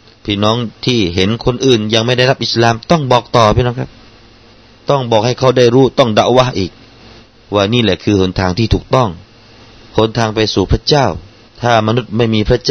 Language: Thai